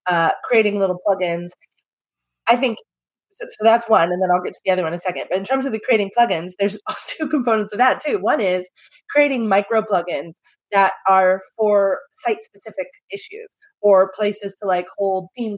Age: 30-49